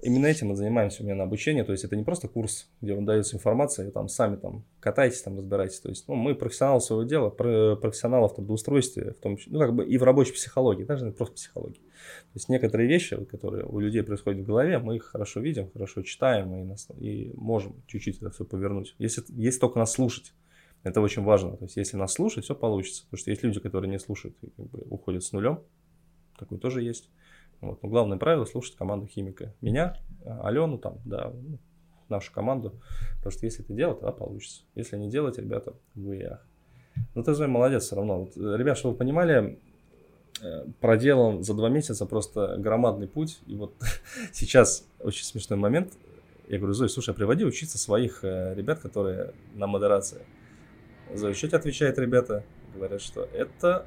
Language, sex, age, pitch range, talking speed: Russian, male, 20-39, 100-125 Hz, 190 wpm